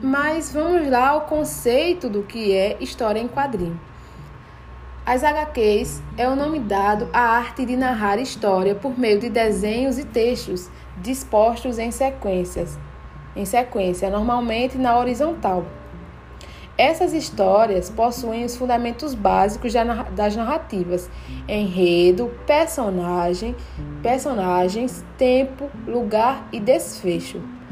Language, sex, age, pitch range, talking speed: Portuguese, female, 20-39, 195-260 Hz, 110 wpm